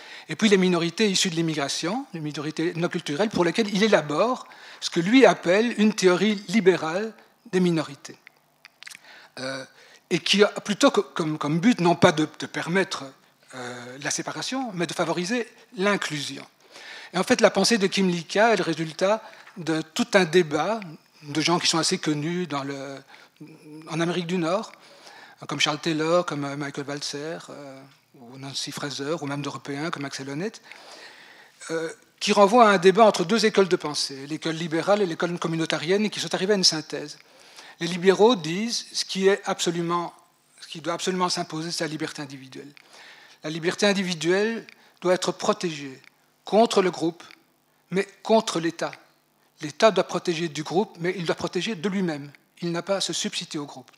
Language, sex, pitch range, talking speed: French, male, 155-195 Hz, 170 wpm